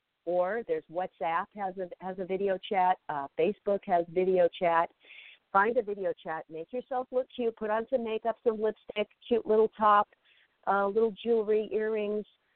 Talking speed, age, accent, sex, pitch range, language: 165 wpm, 50-69, American, female, 165-230 Hz, English